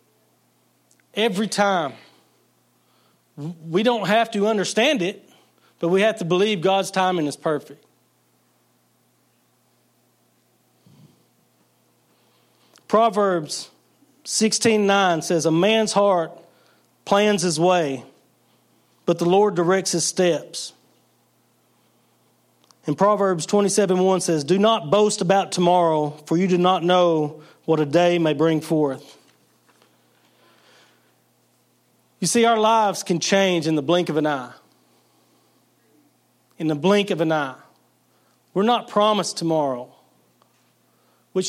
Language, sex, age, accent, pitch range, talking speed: English, male, 40-59, American, 160-205 Hz, 110 wpm